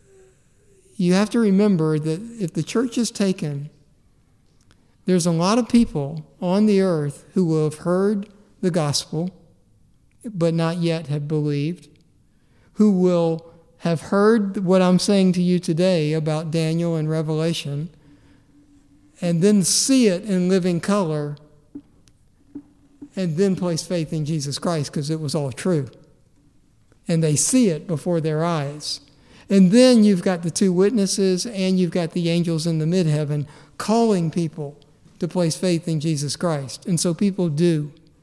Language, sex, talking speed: English, male, 150 wpm